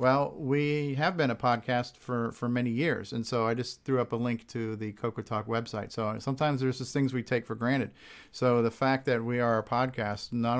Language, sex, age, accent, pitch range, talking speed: English, male, 50-69, American, 115-135 Hz, 230 wpm